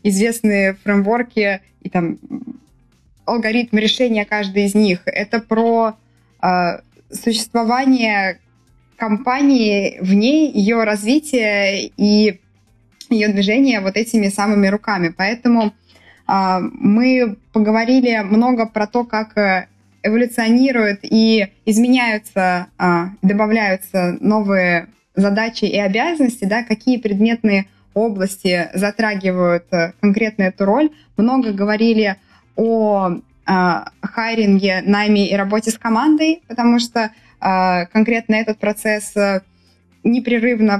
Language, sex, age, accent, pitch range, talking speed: Russian, female, 20-39, native, 195-230 Hz, 95 wpm